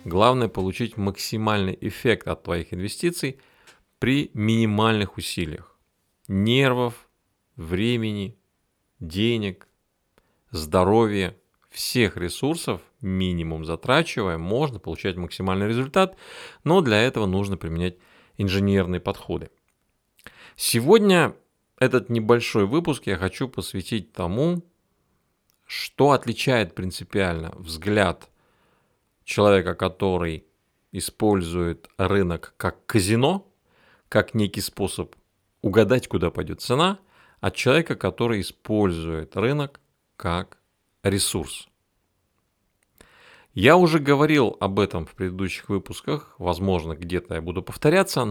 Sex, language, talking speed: male, Russian, 90 wpm